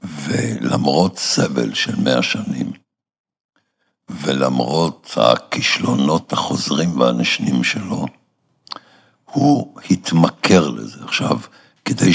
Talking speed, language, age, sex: 75 wpm, Hebrew, 60-79, male